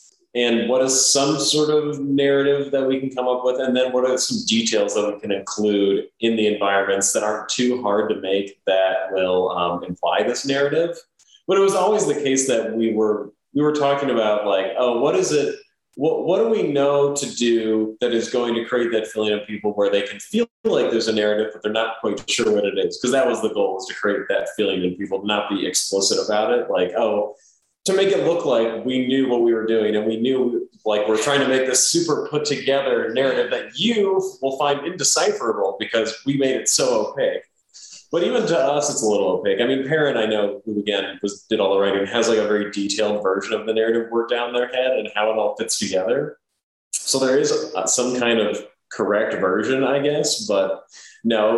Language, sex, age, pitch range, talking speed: English, male, 30-49, 105-145 Hz, 225 wpm